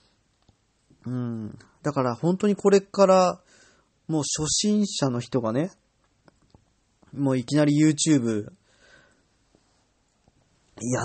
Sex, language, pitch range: male, Japanese, 115-155 Hz